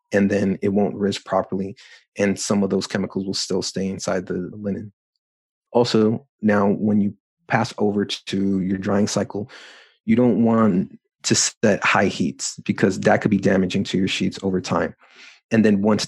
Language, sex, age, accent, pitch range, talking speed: English, male, 30-49, American, 95-110 Hz, 175 wpm